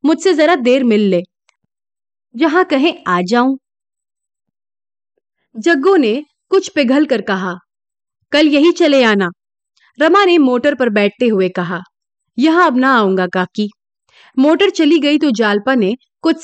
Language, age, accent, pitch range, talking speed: Hindi, 30-49, native, 215-325 Hz, 140 wpm